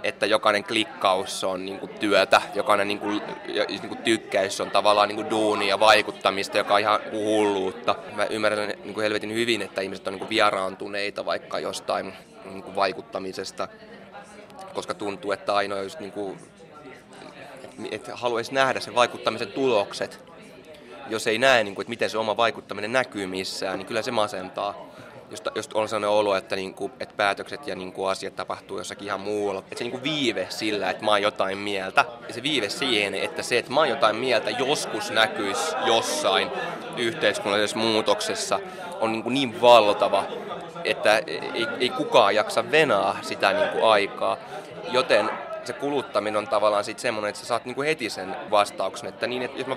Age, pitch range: 20-39, 100-115 Hz